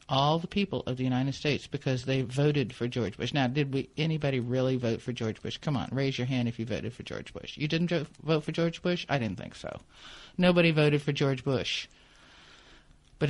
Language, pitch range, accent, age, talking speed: English, 125-170 Hz, American, 50-69, 215 wpm